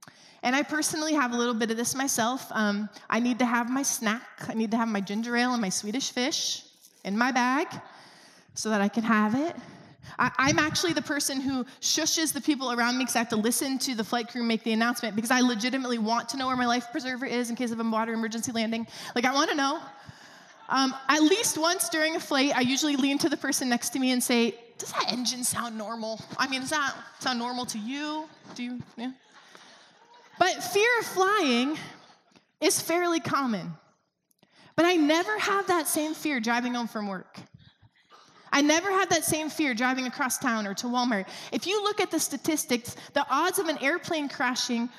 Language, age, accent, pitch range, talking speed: English, 20-39, American, 230-305 Hz, 210 wpm